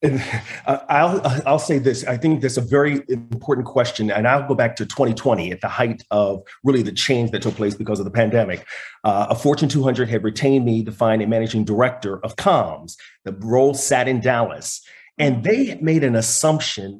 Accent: American